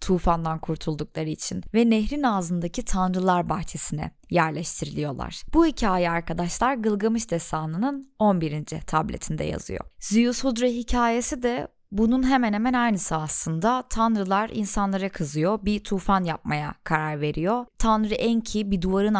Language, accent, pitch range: Turkish, native, 170-220 Hz